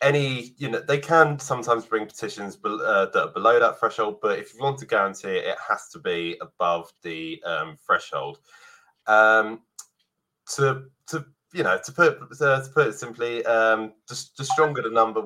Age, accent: 20-39, British